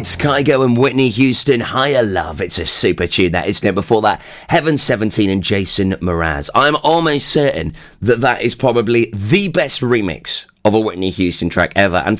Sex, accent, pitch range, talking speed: male, British, 90-125 Hz, 180 wpm